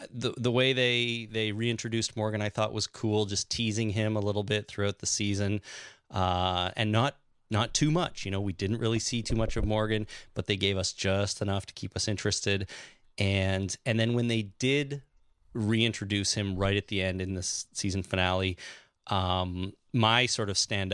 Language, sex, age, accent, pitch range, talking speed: English, male, 30-49, American, 95-115 Hz, 190 wpm